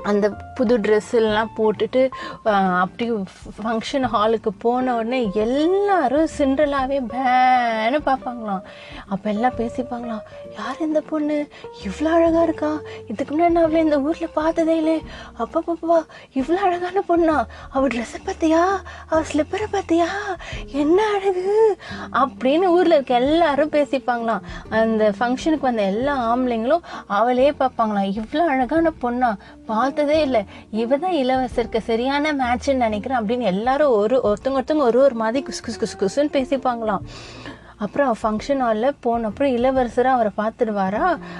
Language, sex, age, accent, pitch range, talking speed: Tamil, female, 30-49, native, 220-290 Hz, 115 wpm